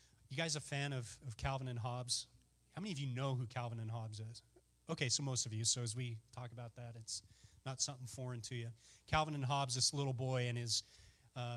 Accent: American